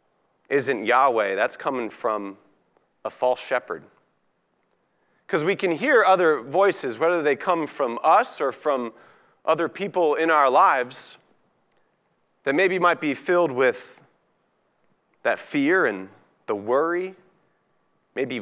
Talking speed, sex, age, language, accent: 125 wpm, male, 30-49, English, American